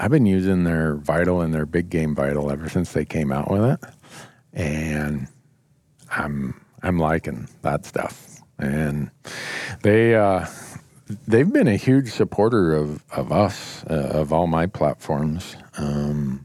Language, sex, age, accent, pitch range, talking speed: English, male, 50-69, American, 75-100 Hz, 145 wpm